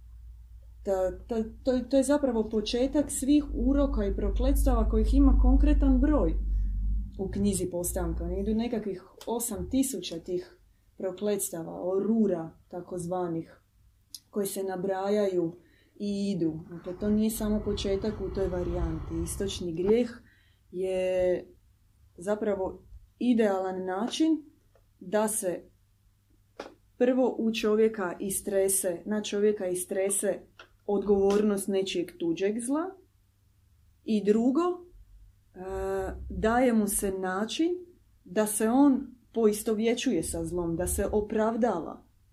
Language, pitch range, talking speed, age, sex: Croatian, 180-225 Hz, 100 wpm, 20-39, female